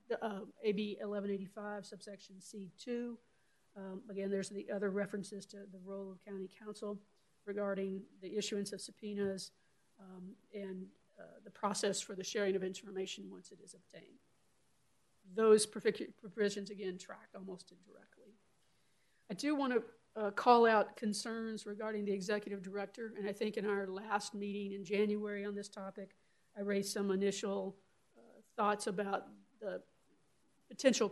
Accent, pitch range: American, 200-215 Hz